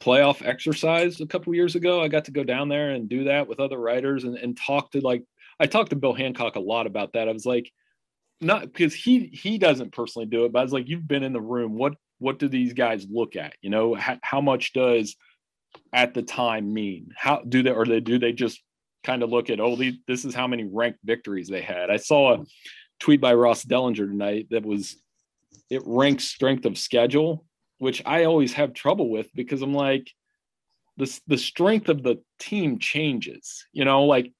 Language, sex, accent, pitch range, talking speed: English, male, American, 115-145 Hz, 220 wpm